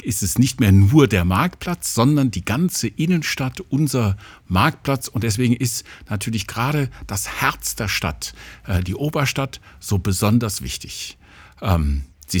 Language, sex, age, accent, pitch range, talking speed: German, male, 60-79, German, 100-140 Hz, 135 wpm